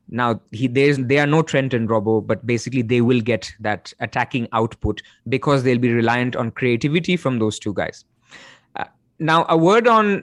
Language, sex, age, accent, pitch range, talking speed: English, male, 20-39, Indian, 120-160 Hz, 190 wpm